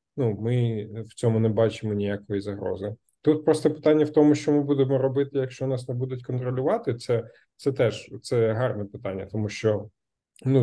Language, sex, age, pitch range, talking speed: Ukrainian, male, 20-39, 110-125 Hz, 175 wpm